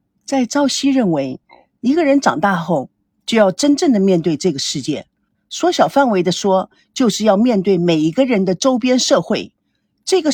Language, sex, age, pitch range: Chinese, female, 50-69, 195-300 Hz